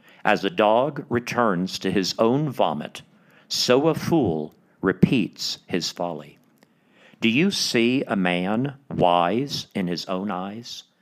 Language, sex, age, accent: English, male, 50-69, American